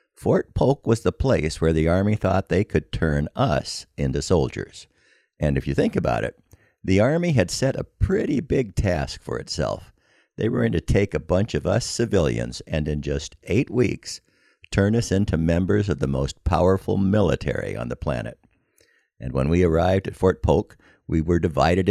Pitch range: 75-100 Hz